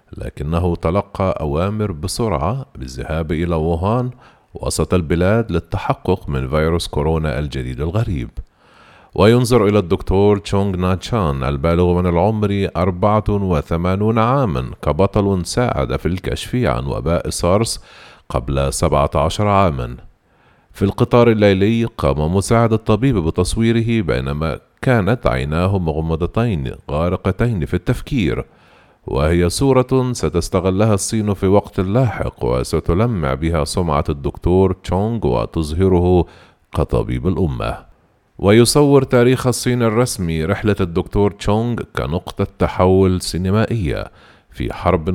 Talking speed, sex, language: 100 wpm, male, Arabic